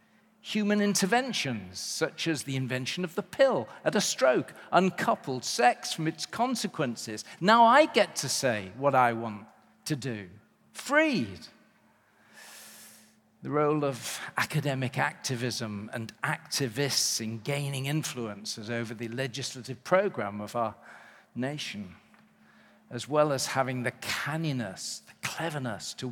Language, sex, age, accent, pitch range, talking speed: English, male, 40-59, British, 120-175 Hz, 125 wpm